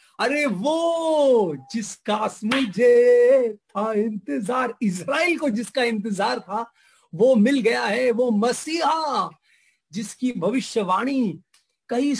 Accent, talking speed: Indian, 100 wpm